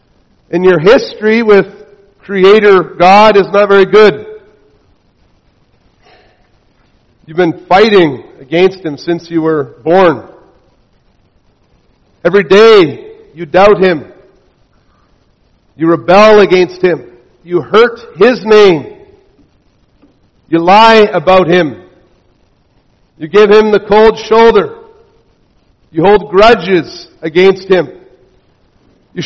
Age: 50-69